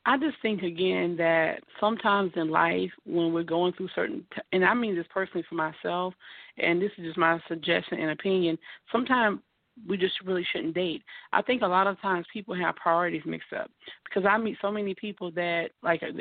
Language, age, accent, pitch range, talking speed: English, 40-59, American, 180-225 Hz, 205 wpm